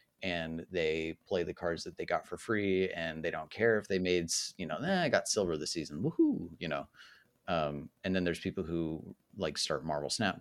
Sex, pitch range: male, 80-95 Hz